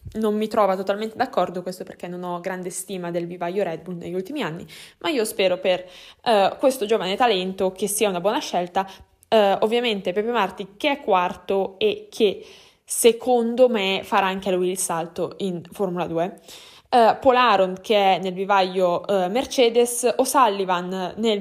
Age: 10-29